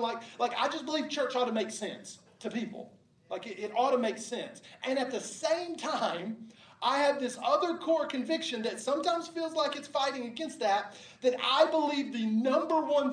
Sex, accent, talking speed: male, American, 200 wpm